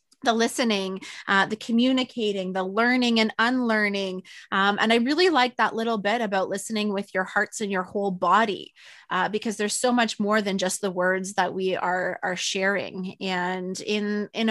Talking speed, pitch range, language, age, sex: 180 wpm, 200-235 Hz, English, 20-39, female